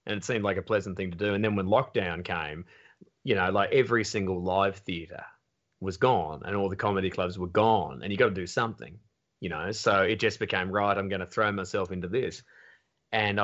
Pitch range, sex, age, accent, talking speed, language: 100-130 Hz, male, 30-49, Australian, 230 wpm, English